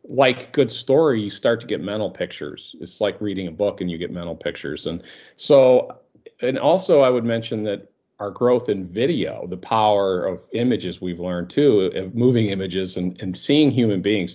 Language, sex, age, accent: English, male, 40-59, American